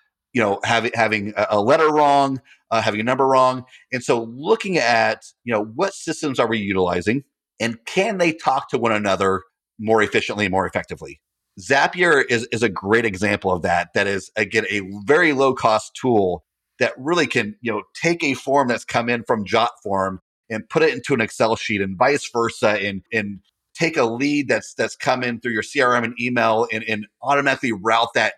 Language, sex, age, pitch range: English, male, 40-59, 105-140 Hz